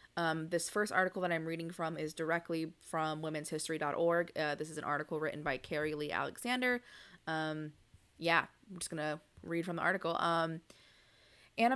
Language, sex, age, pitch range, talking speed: English, female, 20-39, 160-185 Hz, 170 wpm